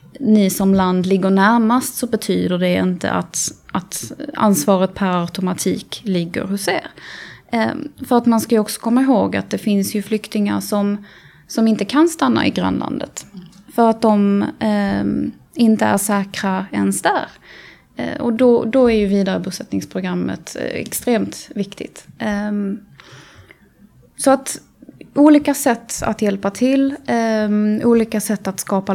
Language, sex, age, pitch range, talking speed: Swedish, female, 20-39, 200-240 Hz, 145 wpm